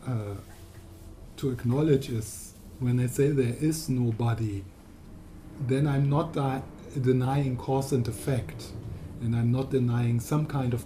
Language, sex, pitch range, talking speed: English, male, 100-130 Hz, 135 wpm